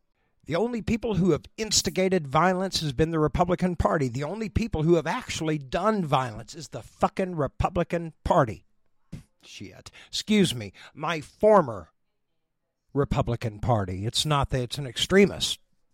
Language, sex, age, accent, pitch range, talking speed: English, male, 50-69, American, 135-185 Hz, 145 wpm